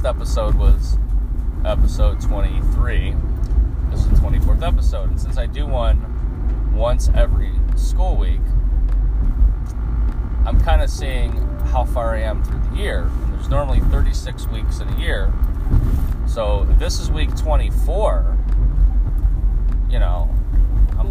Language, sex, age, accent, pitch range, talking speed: English, male, 20-39, American, 65-100 Hz, 130 wpm